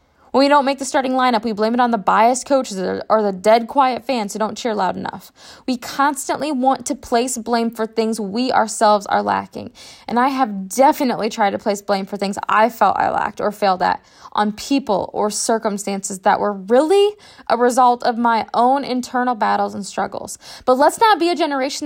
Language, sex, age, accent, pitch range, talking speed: English, female, 10-29, American, 225-275 Hz, 205 wpm